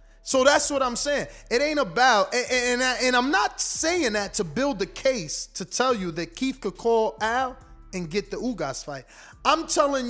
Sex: male